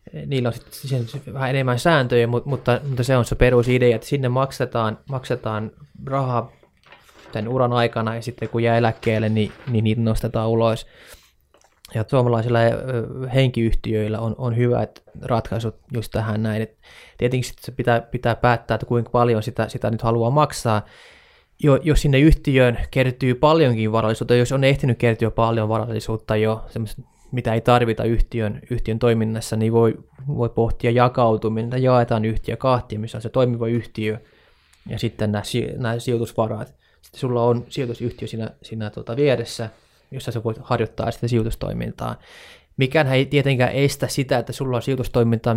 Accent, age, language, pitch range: native, 20-39, Finnish, 110-125 Hz